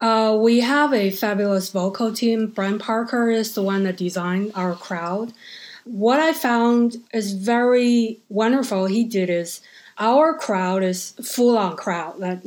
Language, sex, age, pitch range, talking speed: English, female, 20-39, 190-235 Hz, 155 wpm